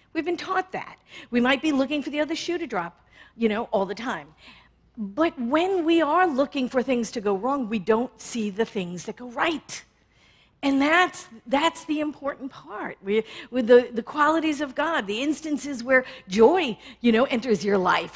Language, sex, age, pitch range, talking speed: English, female, 50-69, 205-285 Hz, 195 wpm